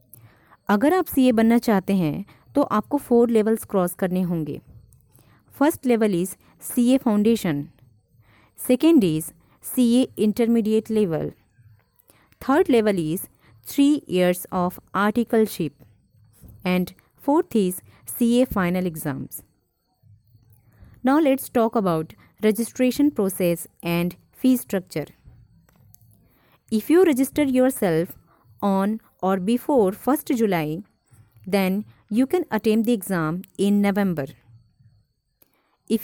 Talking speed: 105 wpm